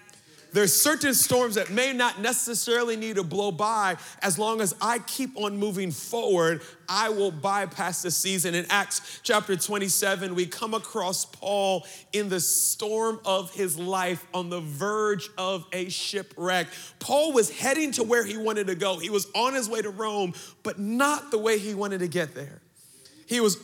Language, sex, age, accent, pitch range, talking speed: English, male, 40-59, American, 180-235 Hz, 185 wpm